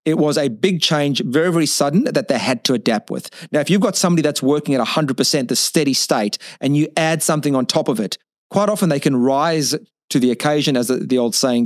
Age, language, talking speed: 40-59, English, 235 wpm